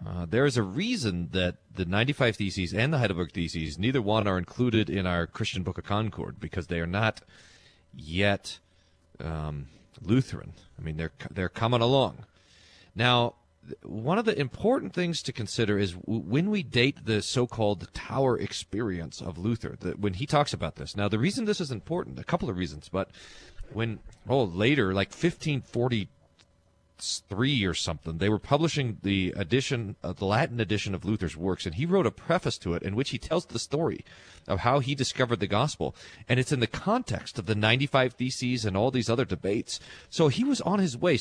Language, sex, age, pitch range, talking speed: English, male, 40-59, 95-140 Hz, 190 wpm